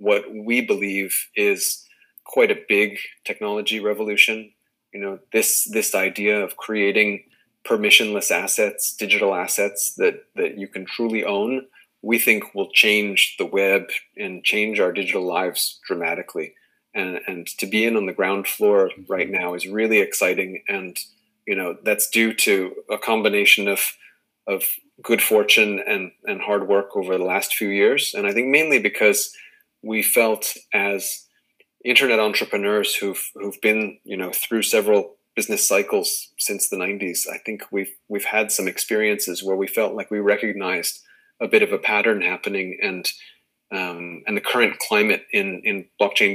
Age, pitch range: 30-49, 100-120 Hz